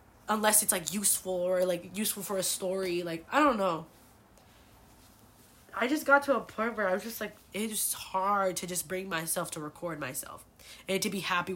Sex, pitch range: female, 170-205 Hz